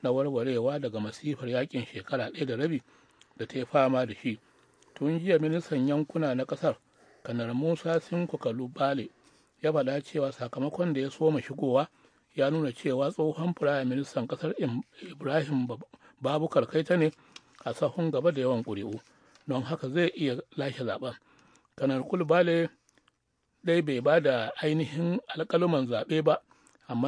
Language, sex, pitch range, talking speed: English, male, 130-165 Hz, 150 wpm